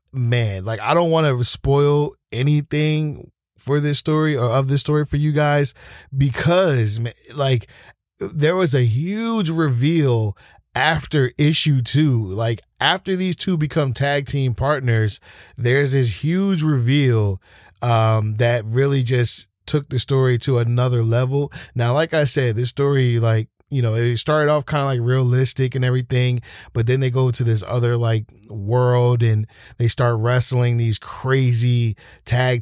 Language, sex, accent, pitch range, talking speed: English, male, American, 115-140 Hz, 155 wpm